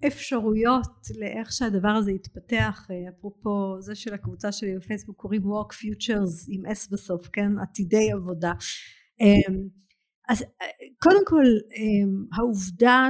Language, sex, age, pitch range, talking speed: Hebrew, female, 50-69, 195-245 Hz, 110 wpm